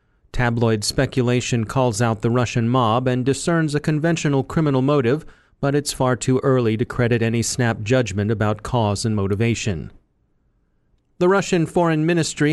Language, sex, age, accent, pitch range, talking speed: English, male, 40-59, American, 115-145 Hz, 150 wpm